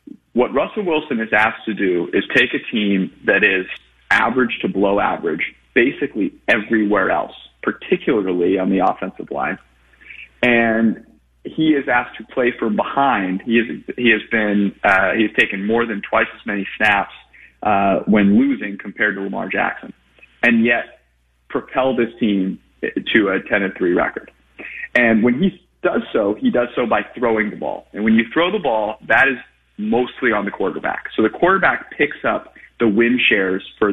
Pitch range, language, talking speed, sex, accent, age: 105-130 Hz, English, 175 wpm, male, American, 30-49